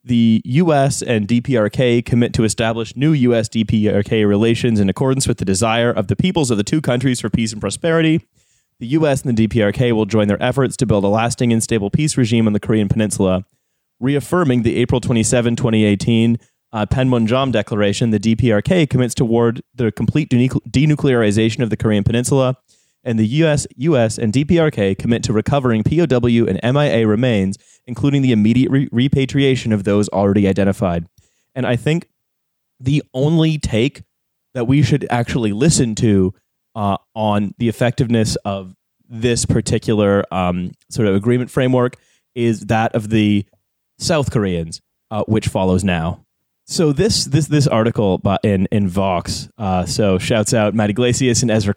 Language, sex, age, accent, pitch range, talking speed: English, male, 30-49, American, 105-130 Hz, 160 wpm